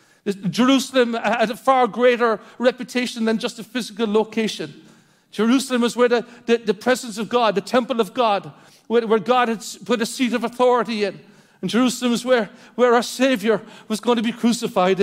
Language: English